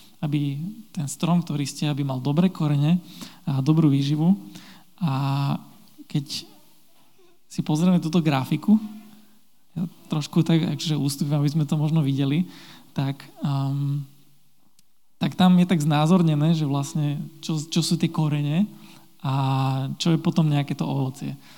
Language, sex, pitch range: Slovak, male, 145-175 Hz